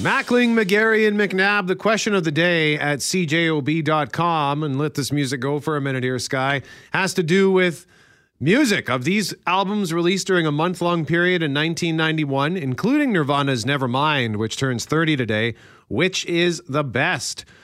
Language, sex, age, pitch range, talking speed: English, male, 40-59, 115-165 Hz, 160 wpm